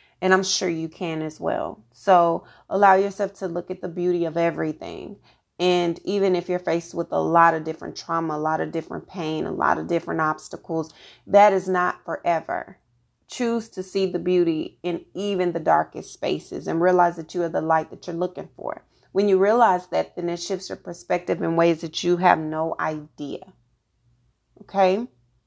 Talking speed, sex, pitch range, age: 190 wpm, female, 165-190 Hz, 30-49